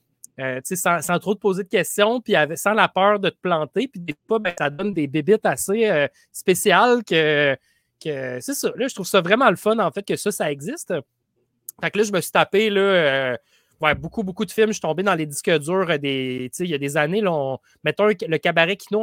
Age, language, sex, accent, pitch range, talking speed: 30-49, French, male, Canadian, 160-210 Hz, 240 wpm